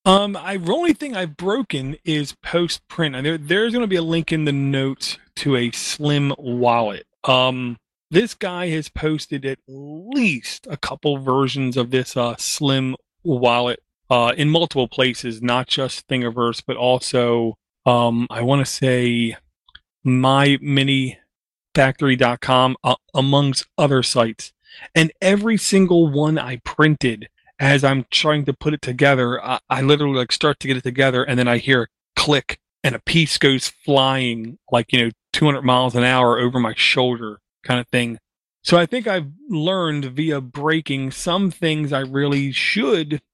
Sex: male